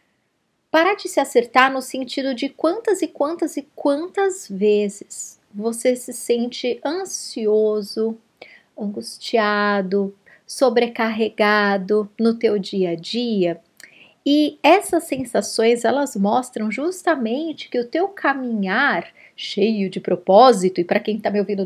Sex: female